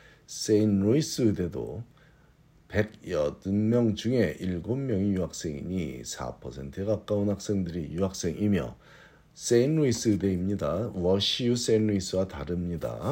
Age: 50-69